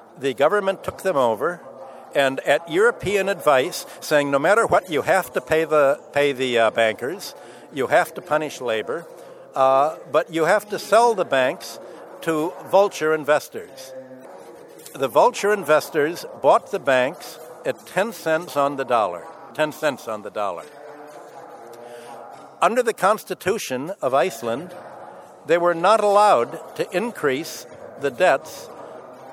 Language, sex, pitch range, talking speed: English, male, 135-195 Hz, 140 wpm